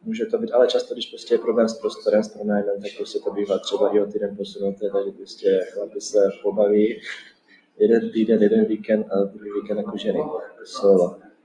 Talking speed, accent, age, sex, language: 200 wpm, native, 20-39, male, Czech